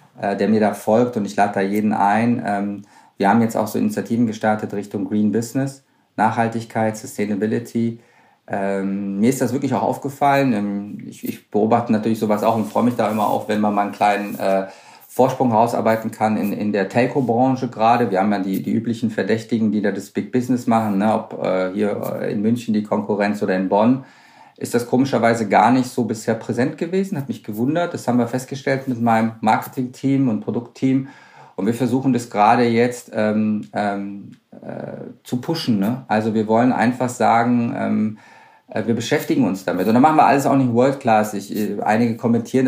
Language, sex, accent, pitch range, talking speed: German, male, German, 100-120 Hz, 180 wpm